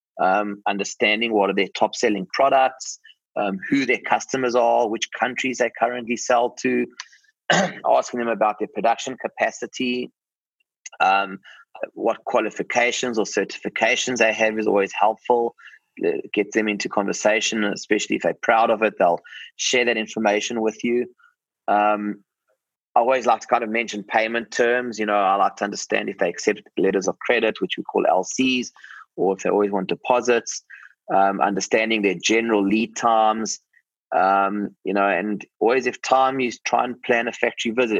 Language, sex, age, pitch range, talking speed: English, male, 20-39, 105-125 Hz, 165 wpm